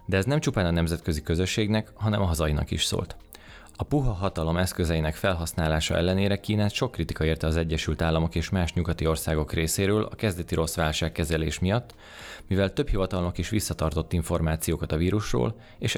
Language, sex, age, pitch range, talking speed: Hungarian, male, 20-39, 80-100 Hz, 170 wpm